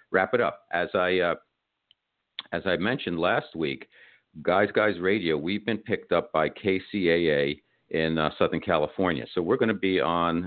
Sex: male